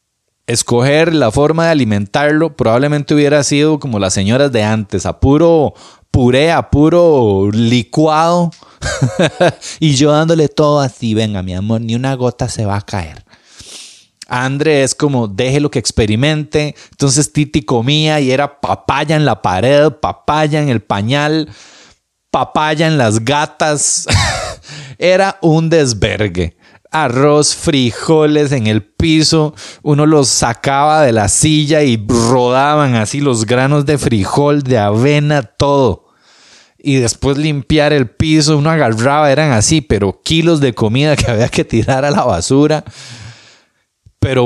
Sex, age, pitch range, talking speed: male, 30-49, 115-150 Hz, 140 wpm